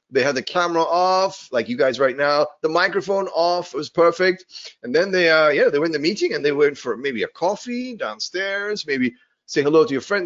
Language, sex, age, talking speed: Spanish, male, 30-49, 235 wpm